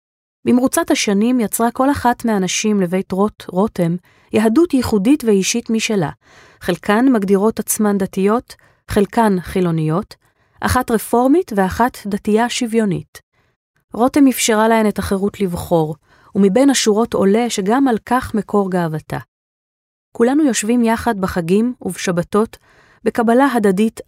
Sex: female